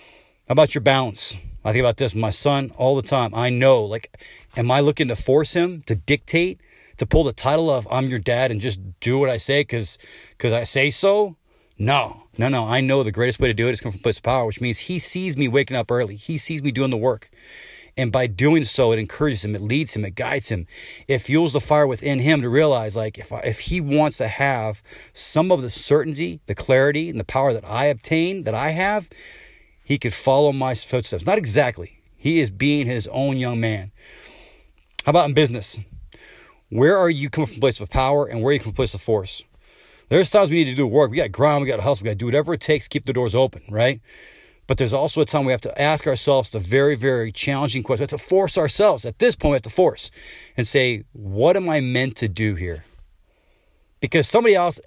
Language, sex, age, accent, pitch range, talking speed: English, male, 30-49, American, 115-150 Hz, 240 wpm